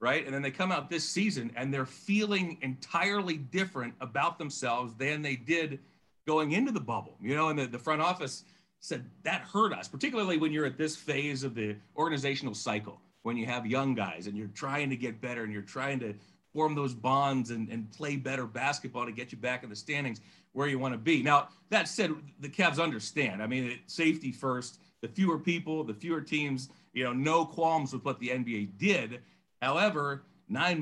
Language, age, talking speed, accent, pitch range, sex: English, 40-59, 205 wpm, American, 125-160 Hz, male